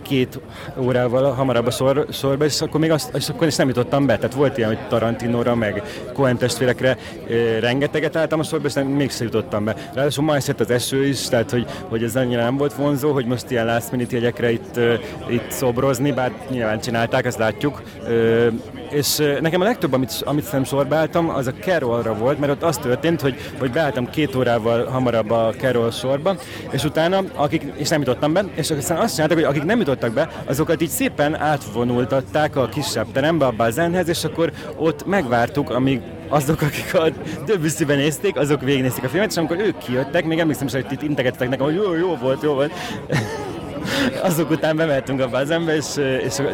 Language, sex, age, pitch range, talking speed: Hungarian, male, 30-49, 125-150 Hz, 190 wpm